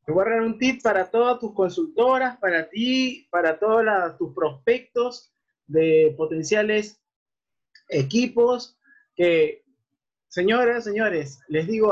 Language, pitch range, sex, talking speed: Spanish, 175-240 Hz, male, 120 wpm